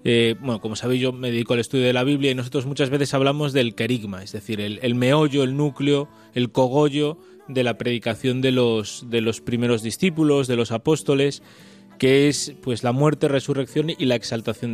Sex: male